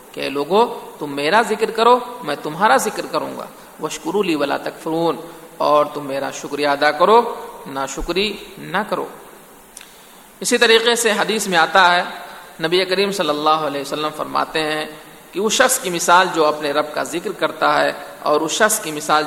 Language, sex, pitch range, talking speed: Urdu, male, 150-185 Hz, 175 wpm